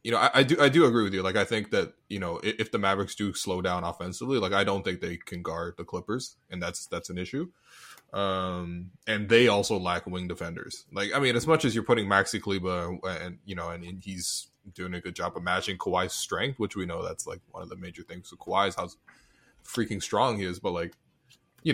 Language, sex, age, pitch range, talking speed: English, male, 20-39, 95-130 Hz, 250 wpm